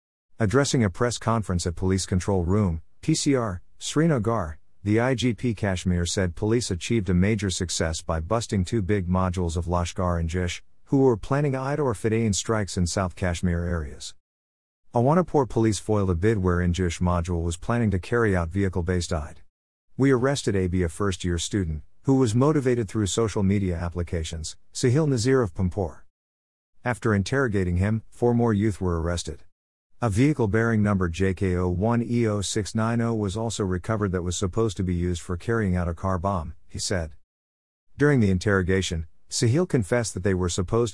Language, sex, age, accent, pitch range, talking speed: English, male, 50-69, American, 90-115 Hz, 165 wpm